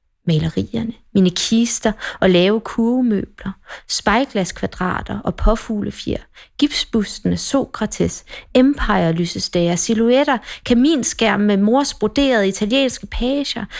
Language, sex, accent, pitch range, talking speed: Danish, female, native, 180-240 Hz, 80 wpm